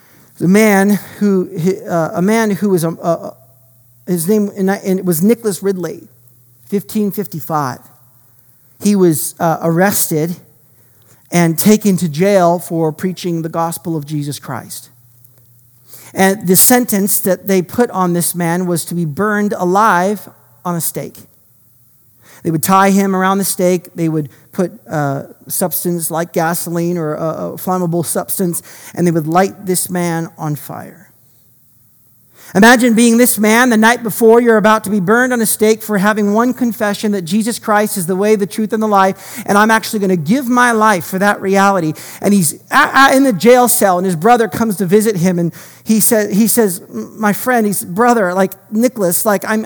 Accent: American